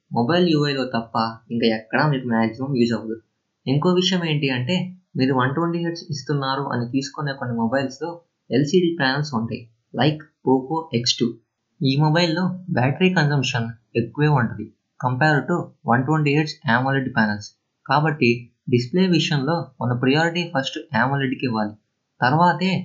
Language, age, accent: Telugu, 20-39, native